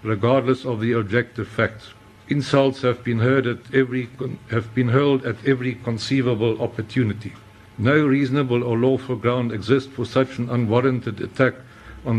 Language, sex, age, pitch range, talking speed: English, male, 60-79, 115-130 Hz, 150 wpm